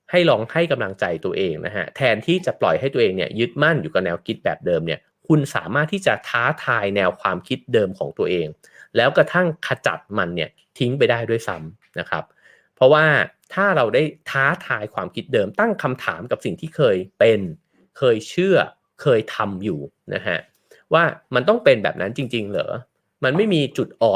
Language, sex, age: English, male, 30-49